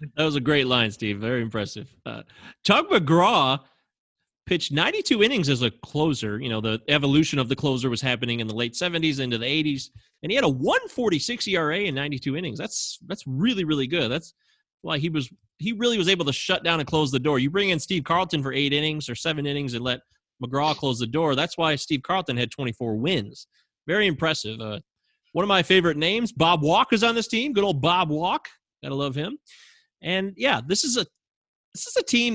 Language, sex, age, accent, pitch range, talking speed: English, male, 30-49, American, 130-180 Hz, 215 wpm